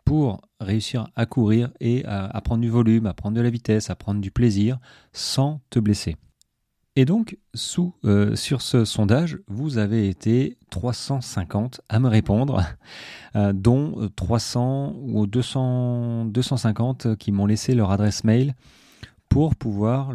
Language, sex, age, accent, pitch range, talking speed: French, male, 30-49, French, 100-125 Hz, 140 wpm